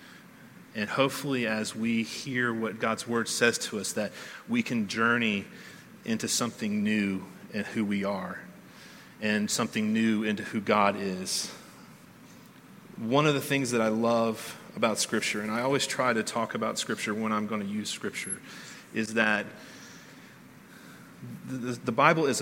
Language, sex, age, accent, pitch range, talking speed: English, male, 30-49, American, 110-130 Hz, 155 wpm